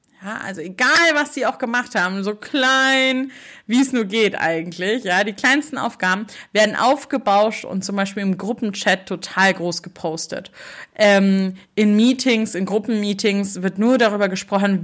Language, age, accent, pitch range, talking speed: German, 30-49, German, 180-235 Hz, 155 wpm